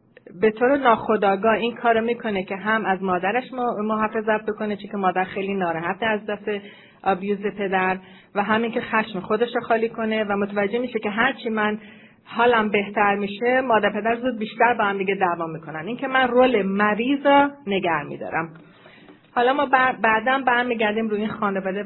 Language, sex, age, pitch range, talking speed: Persian, female, 30-49, 180-225 Hz, 175 wpm